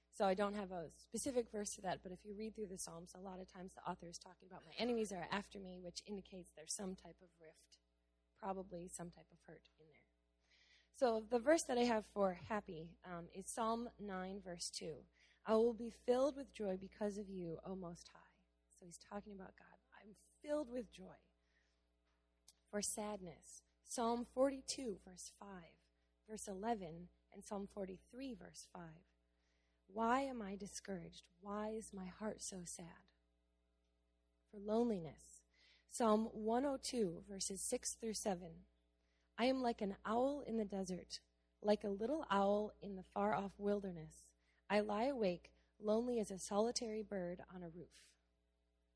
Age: 20-39